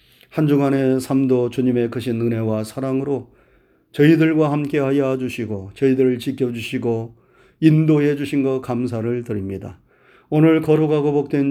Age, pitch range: 30-49, 130-160 Hz